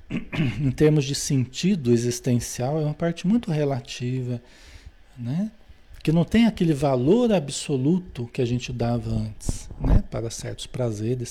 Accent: Brazilian